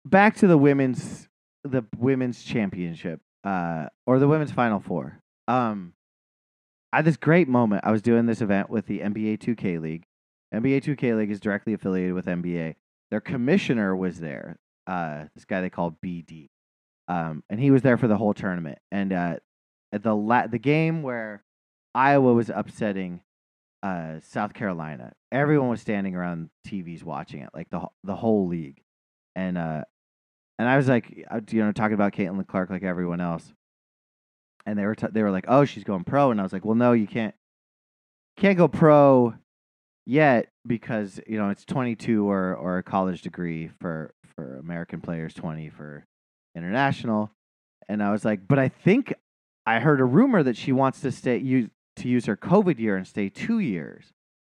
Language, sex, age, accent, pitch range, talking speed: English, male, 30-49, American, 85-125 Hz, 180 wpm